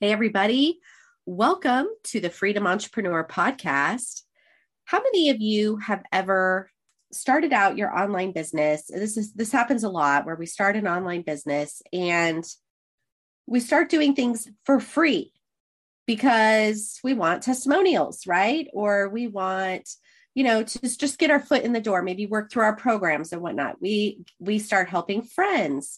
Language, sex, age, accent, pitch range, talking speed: English, female, 30-49, American, 195-260 Hz, 160 wpm